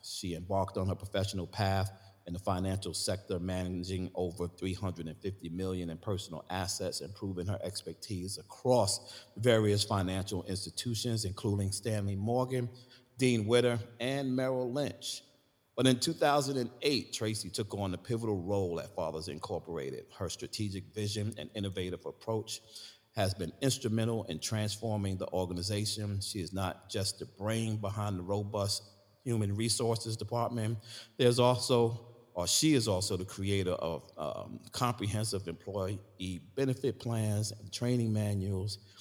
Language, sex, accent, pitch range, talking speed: English, male, American, 90-115 Hz, 130 wpm